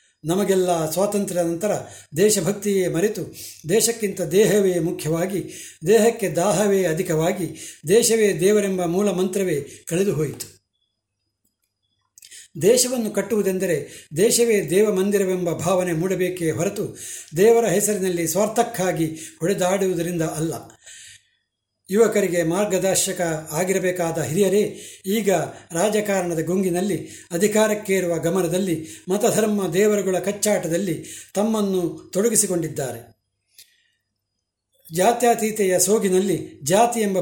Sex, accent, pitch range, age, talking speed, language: male, native, 165-200 Hz, 60-79, 75 wpm, Kannada